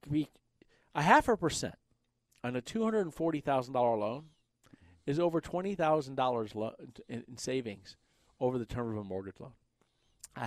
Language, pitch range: English, 105-130 Hz